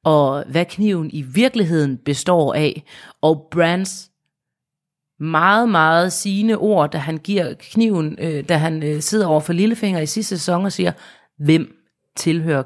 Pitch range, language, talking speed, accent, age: 140-165 Hz, Danish, 150 wpm, native, 30-49